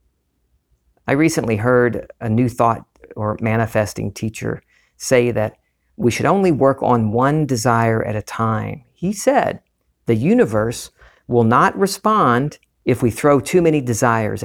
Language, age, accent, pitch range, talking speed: English, 50-69, American, 85-125 Hz, 140 wpm